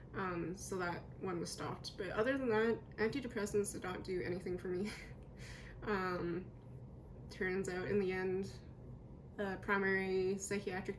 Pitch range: 175-210 Hz